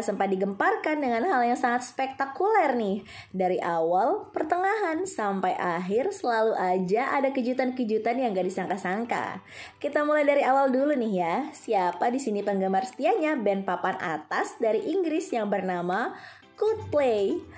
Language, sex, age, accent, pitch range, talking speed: Indonesian, female, 20-39, native, 190-275 Hz, 135 wpm